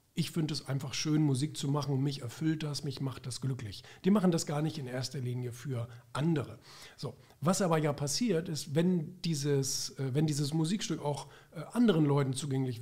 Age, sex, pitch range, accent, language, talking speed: 40-59, male, 135-165 Hz, German, German, 185 wpm